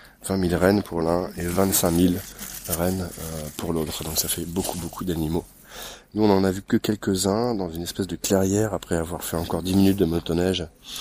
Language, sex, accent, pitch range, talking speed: French, male, French, 80-95 Hz, 200 wpm